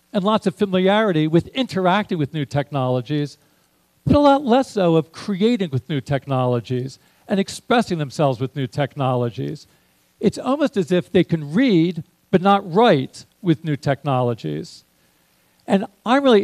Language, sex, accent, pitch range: Japanese, male, American, 140-210 Hz